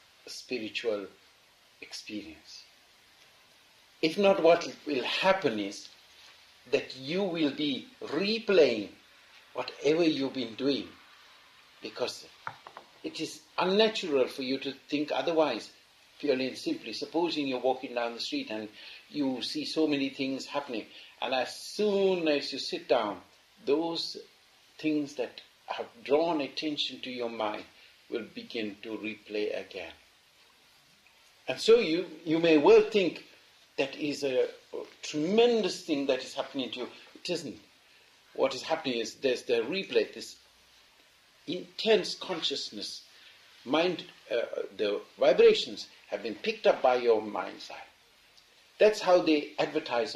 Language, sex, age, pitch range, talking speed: English, male, 60-79, 135-225 Hz, 130 wpm